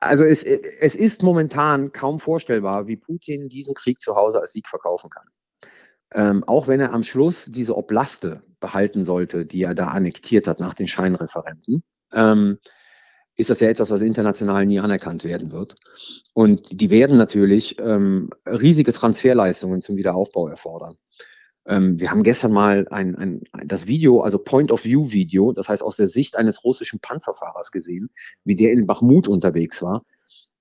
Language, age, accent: German, 40-59, German